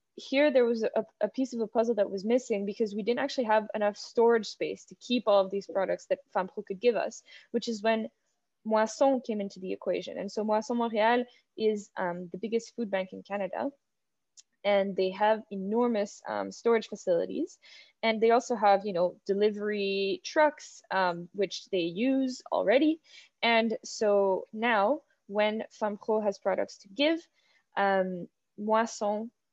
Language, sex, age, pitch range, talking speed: English, female, 10-29, 195-235 Hz, 165 wpm